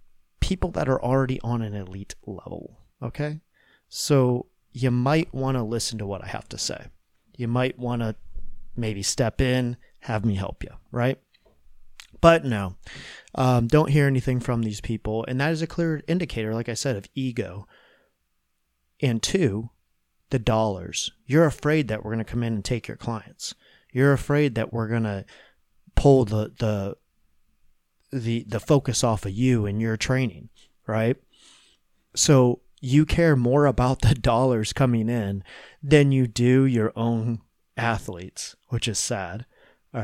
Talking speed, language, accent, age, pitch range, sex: 160 wpm, English, American, 30-49, 110-130 Hz, male